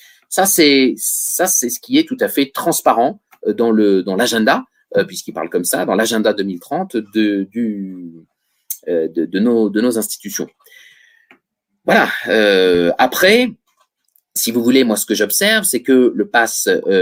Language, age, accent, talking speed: French, 30-49, French, 160 wpm